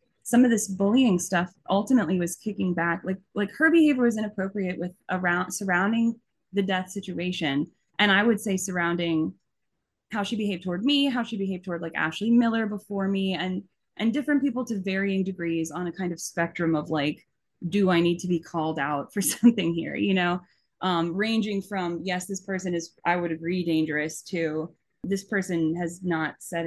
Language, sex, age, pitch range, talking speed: English, female, 20-39, 175-220 Hz, 185 wpm